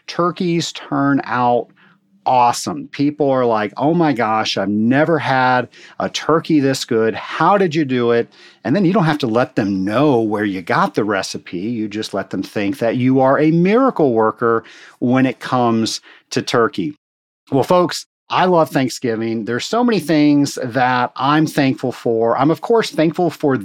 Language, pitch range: English, 120-165 Hz